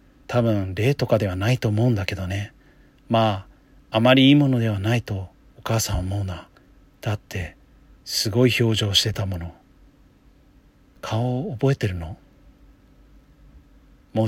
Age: 40-59